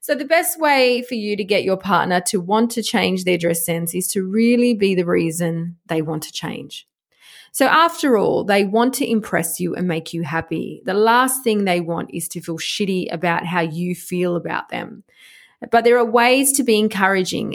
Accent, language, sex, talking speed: Australian, English, female, 210 wpm